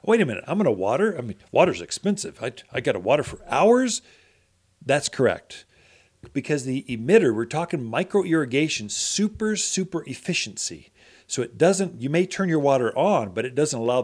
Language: English